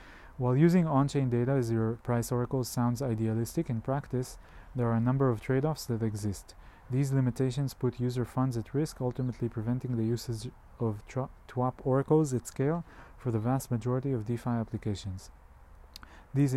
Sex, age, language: male, 30-49, Hebrew